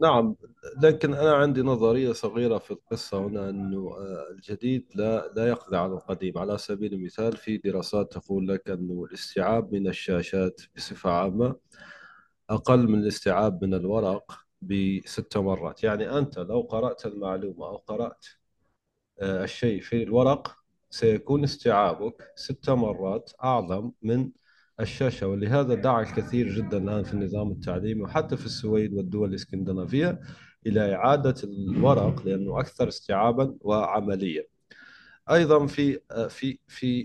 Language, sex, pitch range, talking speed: Arabic, male, 95-120 Hz, 120 wpm